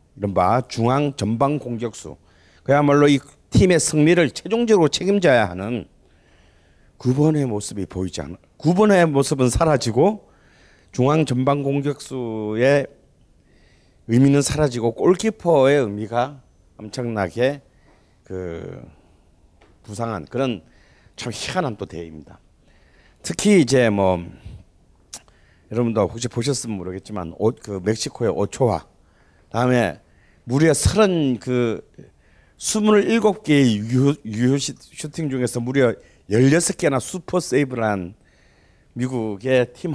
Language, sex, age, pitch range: Korean, male, 40-59, 95-140 Hz